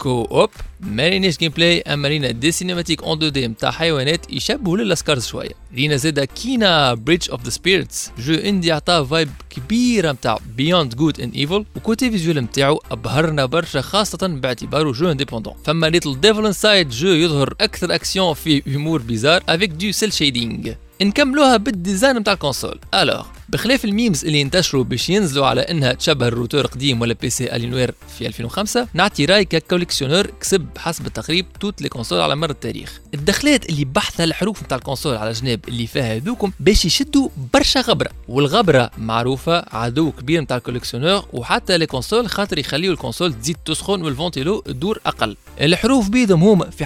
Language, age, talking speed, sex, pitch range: Arabic, 20-39, 140 wpm, male, 135-195 Hz